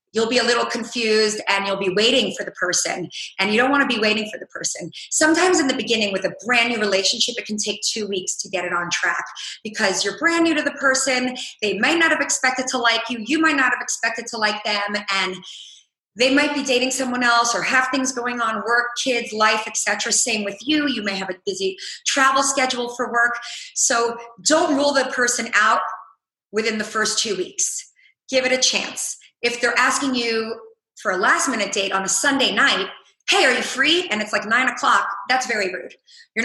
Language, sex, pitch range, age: English, female, 200-260 Hz, 30-49